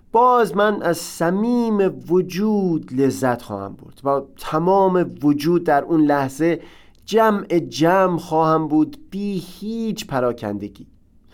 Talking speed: 110 wpm